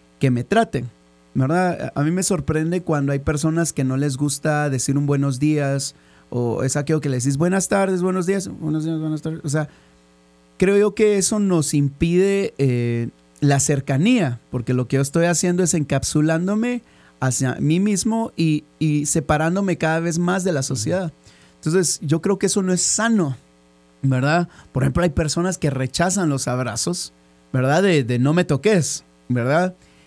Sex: male